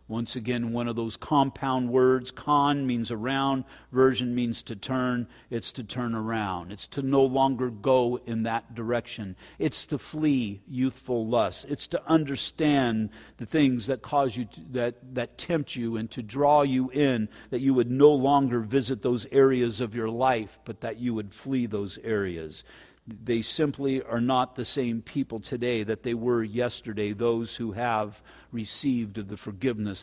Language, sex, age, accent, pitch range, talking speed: English, male, 50-69, American, 115-145 Hz, 170 wpm